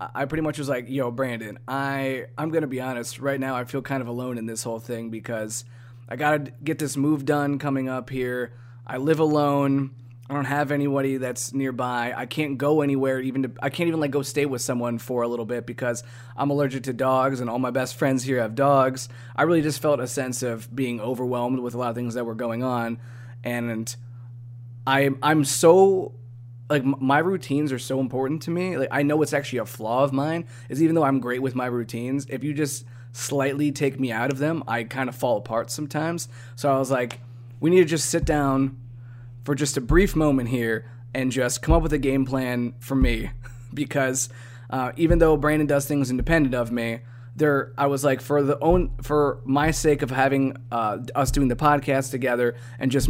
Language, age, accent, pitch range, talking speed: English, 20-39, American, 120-145 Hz, 215 wpm